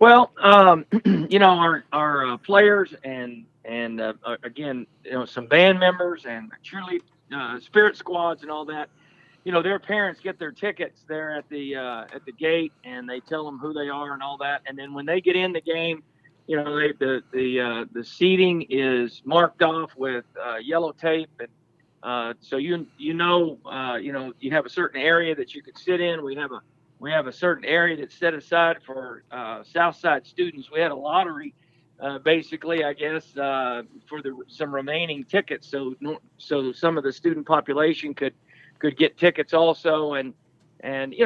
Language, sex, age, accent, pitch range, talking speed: English, male, 50-69, American, 140-175 Hz, 195 wpm